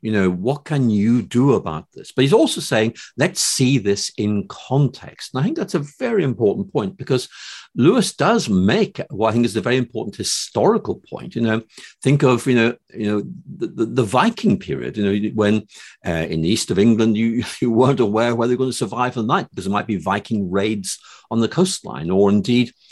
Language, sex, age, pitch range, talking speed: English, male, 50-69, 100-125 Hz, 215 wpm